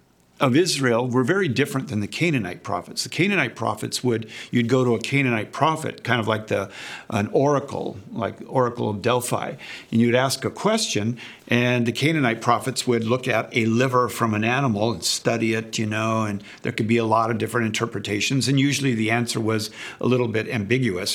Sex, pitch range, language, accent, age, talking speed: male, 115-135 Hz, English, American, 50-69, 195 wpm